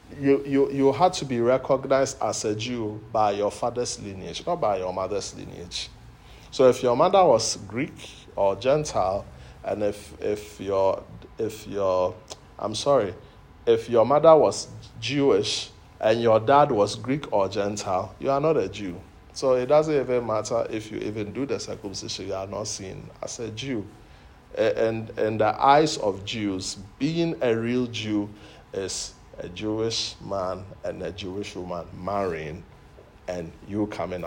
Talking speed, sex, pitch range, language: 165 wpm, male, 100-135 Hz, English